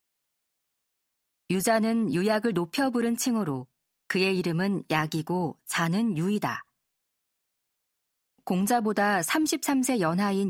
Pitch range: 170-225 Hz